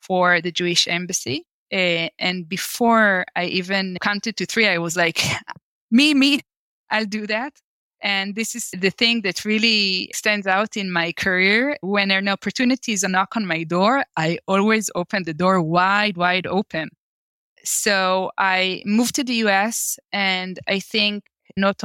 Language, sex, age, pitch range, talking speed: English, female, 20-39, 175-215 Hz, 160 wpm